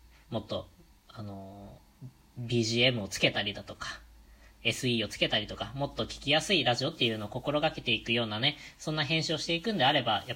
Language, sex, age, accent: Japanese, female, 20-39, native